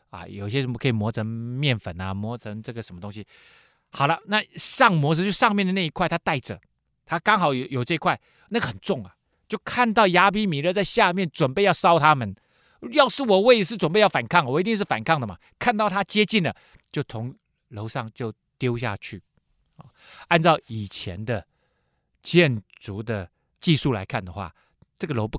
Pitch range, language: 110-175 Hz, Chinese